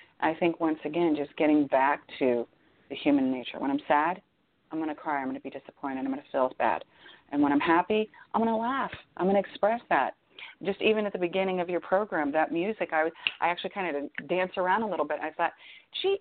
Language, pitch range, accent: English, 145-195 Hz, American